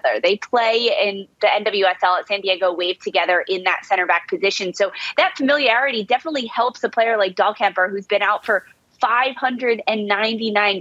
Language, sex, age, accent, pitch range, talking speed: English, female, 20-39, American, 185-235 Hz, 160 wpm